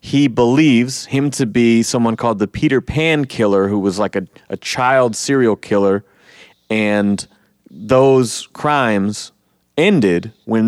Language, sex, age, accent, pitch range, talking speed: English, male, 30-49, American, 105-135 Hz, 135 wpm